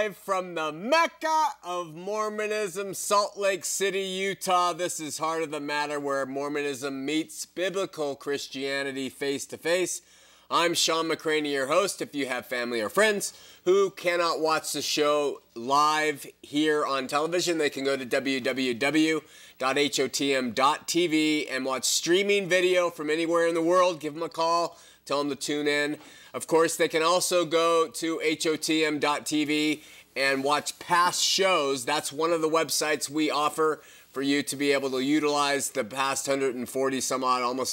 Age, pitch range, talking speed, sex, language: 30-49, 140-165 Hz, 155 wpm, male, English